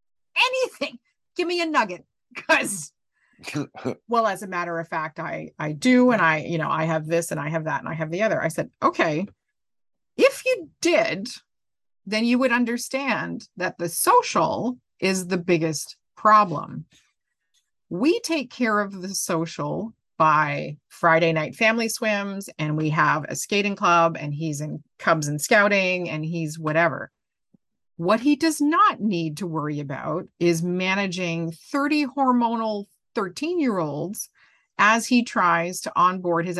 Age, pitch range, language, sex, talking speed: 30-49, 160-225 Hz, English, female, 155 wpm